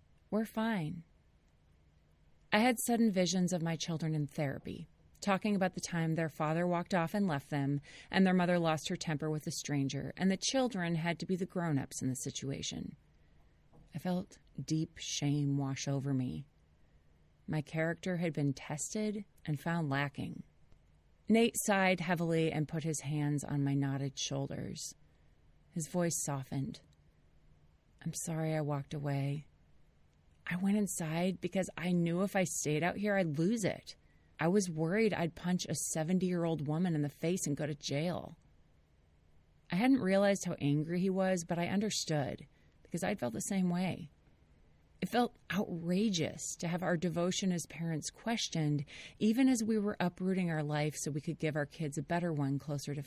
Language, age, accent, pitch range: English, 30-49, American, 140-185 Hz